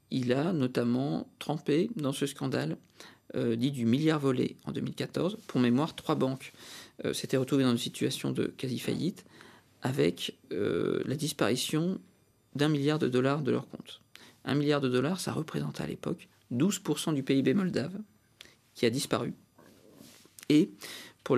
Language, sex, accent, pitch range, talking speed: French, male, French, 125-155 Hz, 150 wpm